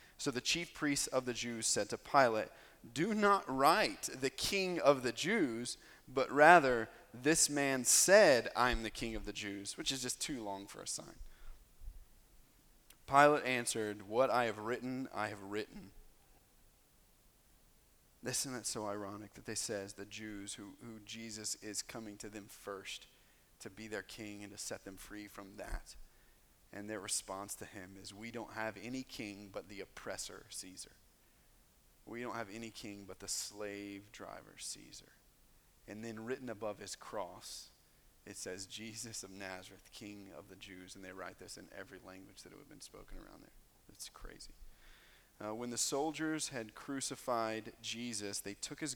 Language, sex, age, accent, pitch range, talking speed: English, male, 30-49, American, 100-125 Hz, 175 wpm